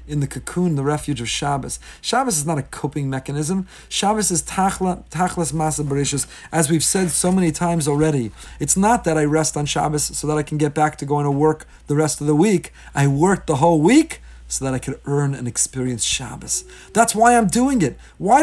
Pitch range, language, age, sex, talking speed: 145-180 Hz, English, 40-59, male, 220 wpm